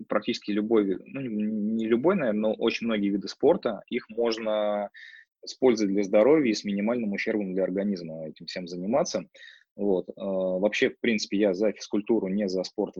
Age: 20-39